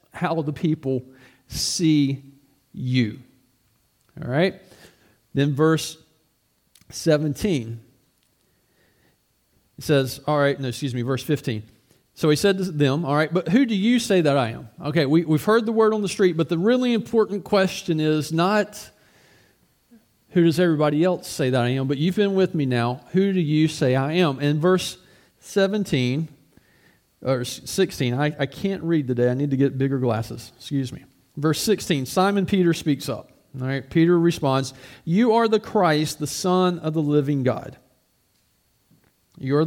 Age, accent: 40-59, American